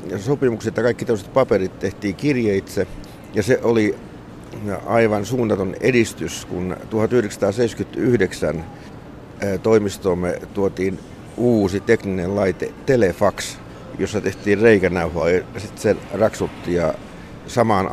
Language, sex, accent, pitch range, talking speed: Finnish, male, native, 95-110 Hz, 95 wpm